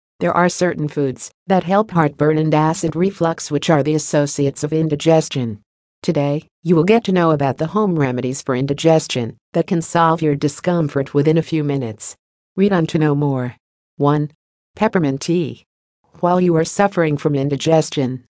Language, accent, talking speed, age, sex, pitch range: English, American, 165 wpm, 50-69, female, 145-175 Hz